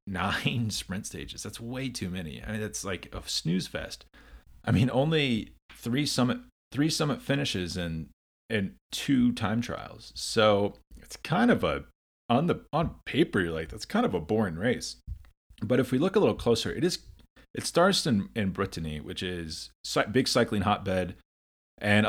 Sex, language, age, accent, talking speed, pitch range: male, English, 30-49, American, 175 wpm, 85-115 Hz